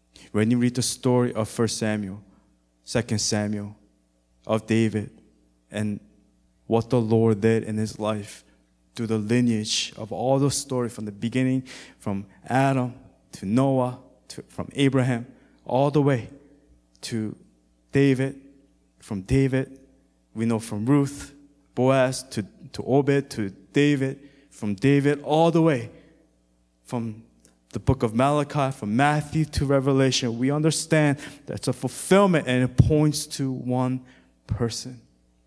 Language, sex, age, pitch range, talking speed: English, male, 20-39, 90-130 Hz, 135 wpm